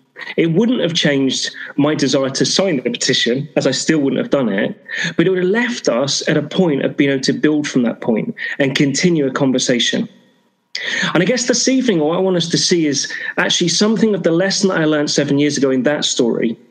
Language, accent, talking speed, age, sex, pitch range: English, British, 230 wpm, 30-49, male, 145-190 Hz